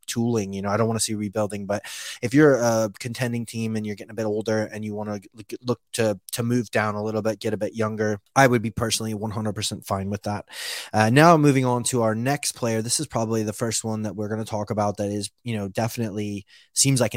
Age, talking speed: 20-39, 250 wpm